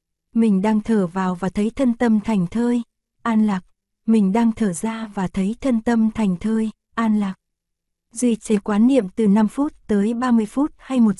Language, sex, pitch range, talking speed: Vietnamese, female, 195-235 Hz, 195 wpm